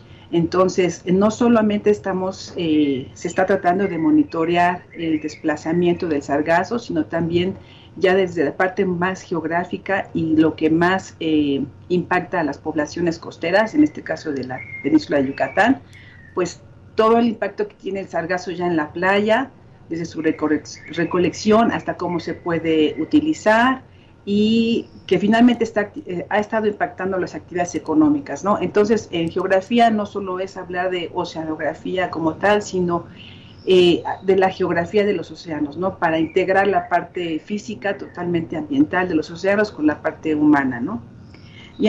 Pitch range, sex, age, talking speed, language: 160-205 Hz, female, 50-69, 160 wpm, Spanish